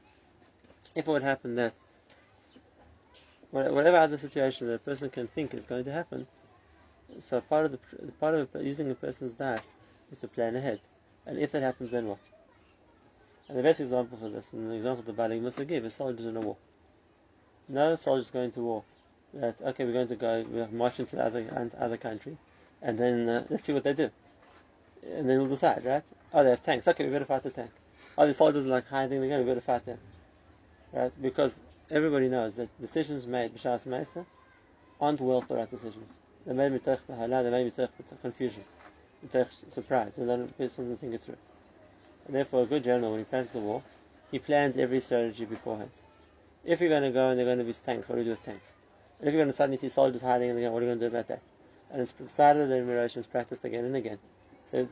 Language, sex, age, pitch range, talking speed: English, male, 30-49, 115-135 Hz, 215 wpm